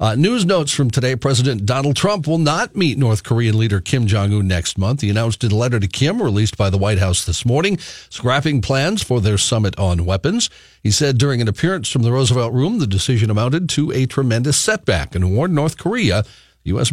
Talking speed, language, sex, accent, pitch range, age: 220 wpm, English, male, American, 100-135 Hz, 50-69